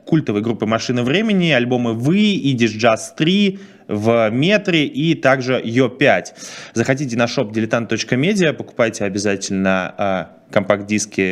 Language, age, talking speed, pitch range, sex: Russian, 20-39, 115 wpm, 110-150 Hz, male